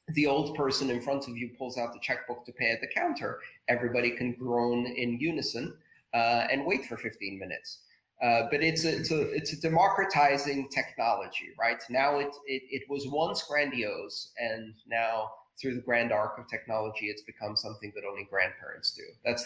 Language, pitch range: English, 115-150 Hz